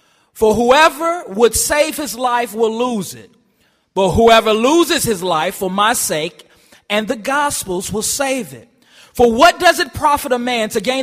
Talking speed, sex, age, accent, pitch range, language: 175 wpm, male, 30-49, American, 165-230 Hz, English